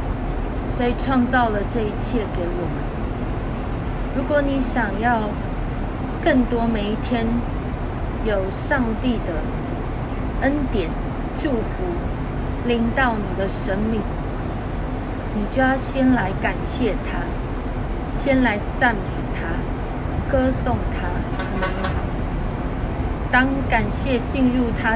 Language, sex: Chinese, female